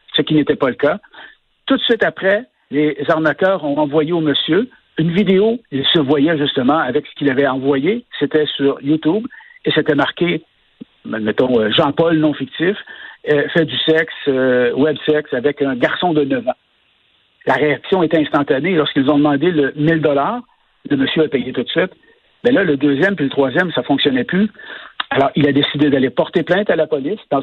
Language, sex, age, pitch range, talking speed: French, male, 60-79, 140-165 Hz, 190 wpm